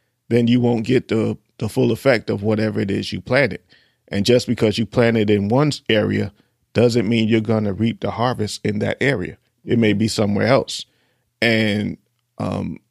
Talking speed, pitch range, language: 185 wpm, 110-125 Hz, English